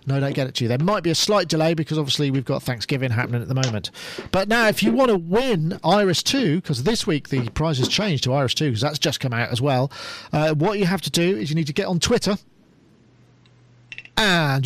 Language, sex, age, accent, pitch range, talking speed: English, male, 40-59, British, 130-185 Hz, 255 wpm